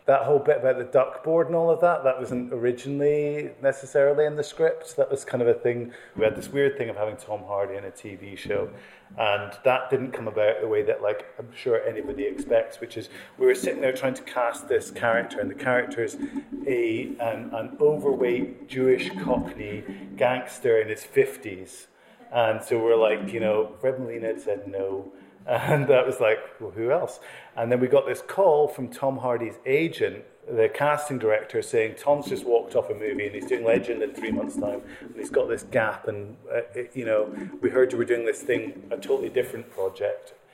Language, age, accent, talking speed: English, 40-59, British, 205 wpm